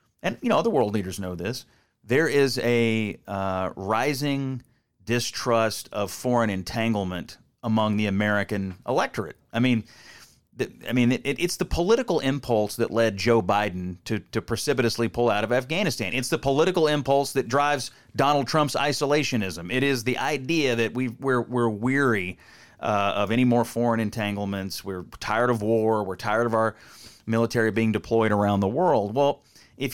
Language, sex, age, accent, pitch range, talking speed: English, male, 30-49, American, 105-130 Hz, 165 wpm